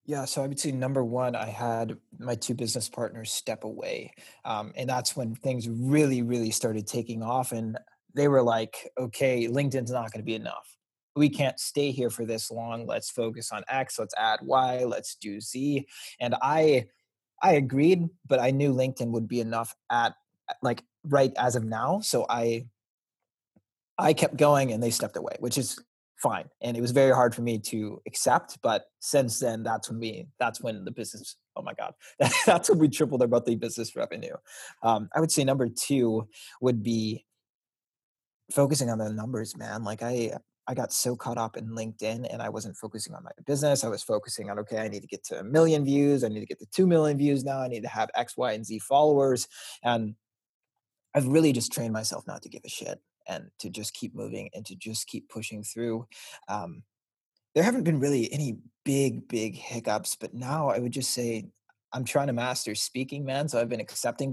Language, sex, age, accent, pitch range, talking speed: English, male, 20-39, American, 115-140 Hz, 205 wpm